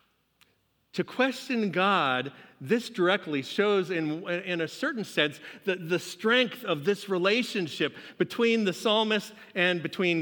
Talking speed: 130 wpm